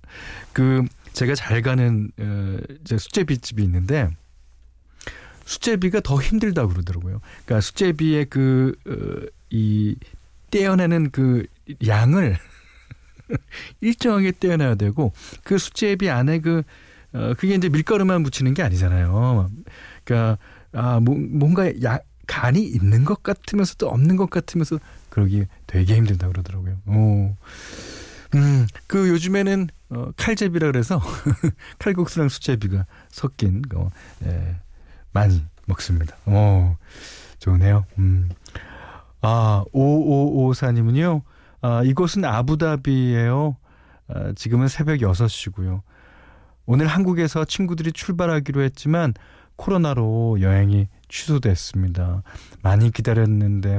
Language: Korean